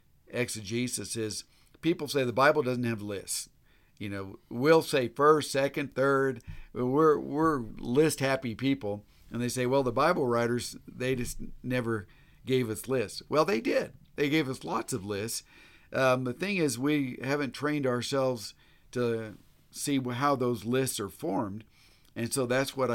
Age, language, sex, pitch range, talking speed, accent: 50-69, English, male, 110-135 Hz, 160 wpm, American